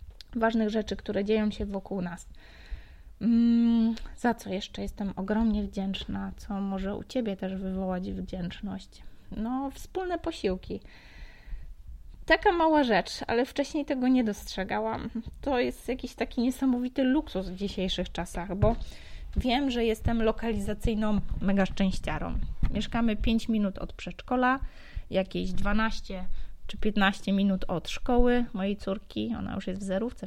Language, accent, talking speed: Polish, native, 130 wpm